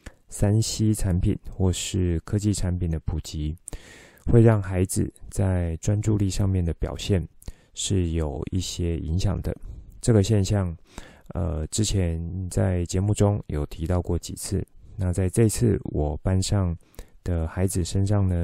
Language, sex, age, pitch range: Chinese, male, 20-39, 85-100 Hz